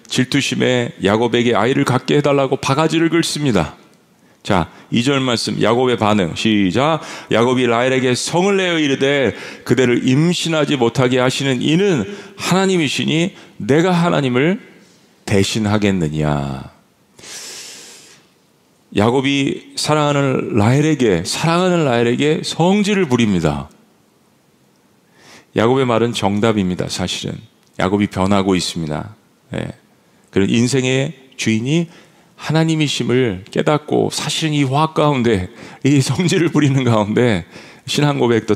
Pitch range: 110-150 Hz